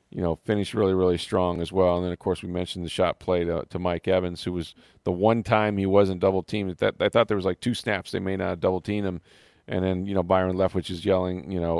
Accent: American